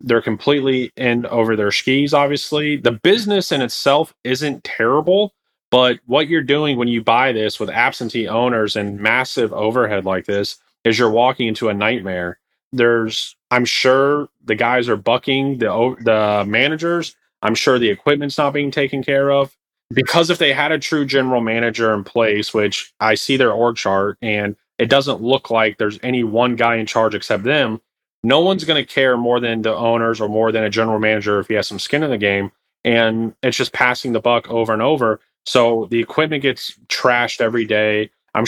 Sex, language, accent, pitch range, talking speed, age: male, English, American, 110-135 Hz, 190 wpm, 30-49